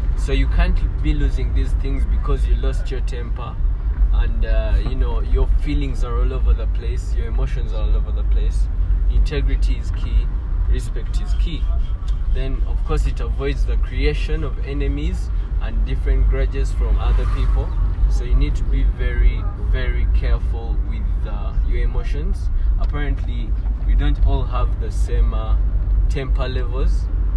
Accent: South African